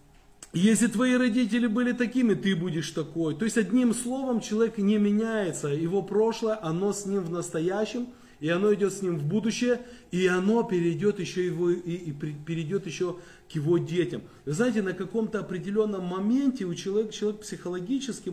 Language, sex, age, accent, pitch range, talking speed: Russian, male, 30-49, native, 160-215 Hz, 145 wpm